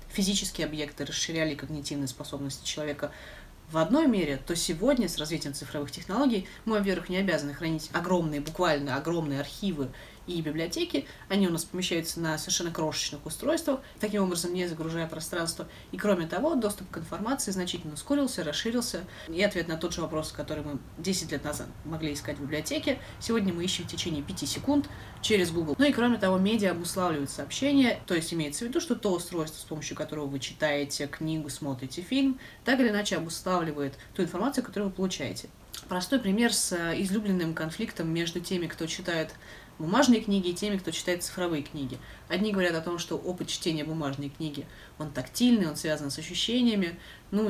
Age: 20-39